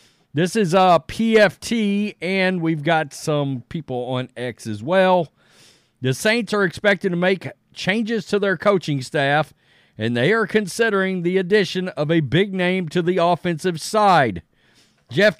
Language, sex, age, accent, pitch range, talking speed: English, male, 40-59, American, 145-200 Hz, 150 wpm